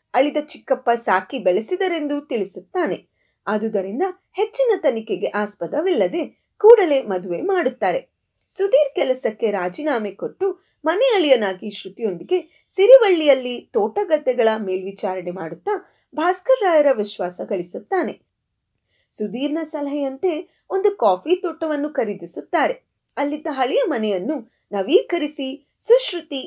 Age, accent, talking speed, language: 30-49, native, 80 wpm, Kannada